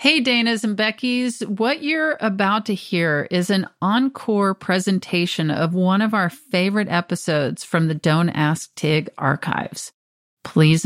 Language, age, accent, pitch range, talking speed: English, 40-59, American, 180-225 Hz, 145 wpm